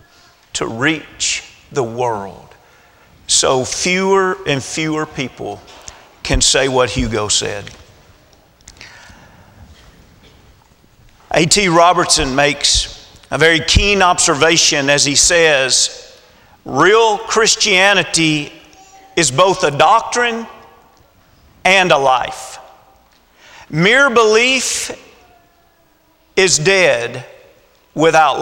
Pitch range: 160-235 Hz